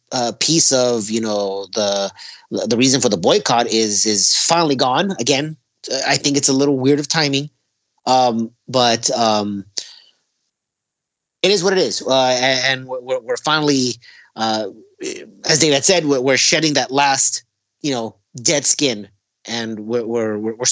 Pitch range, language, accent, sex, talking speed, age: 115-145 Hz, English, American, male, 155 wpm, 30-49